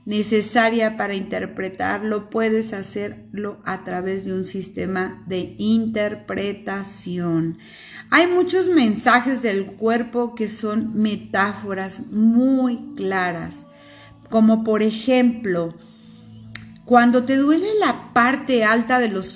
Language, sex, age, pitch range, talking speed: Spanish, female, 50-69, 205-240 Hz, 100 wpm